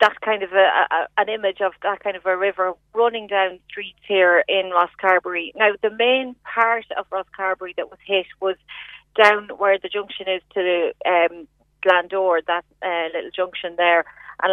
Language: English